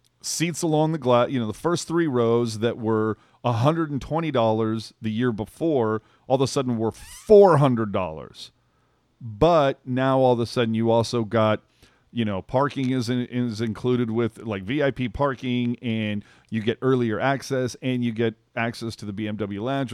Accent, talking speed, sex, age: American, 165 wpm, male, 40-59